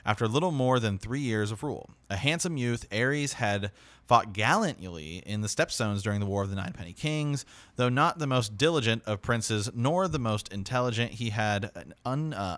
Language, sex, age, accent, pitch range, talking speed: English, male, 30-49, American, 100-130 Hz, 205 wpm